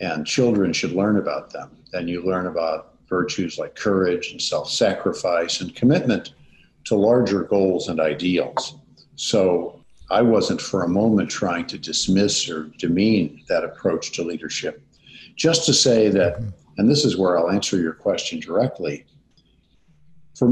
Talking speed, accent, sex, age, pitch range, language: 150 wpm, American, male, 50-69, 90-115 Hz, English